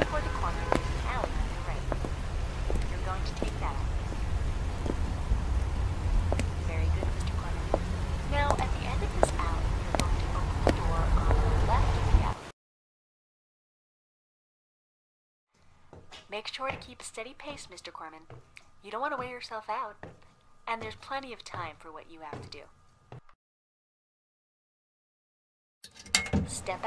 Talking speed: 140 wpm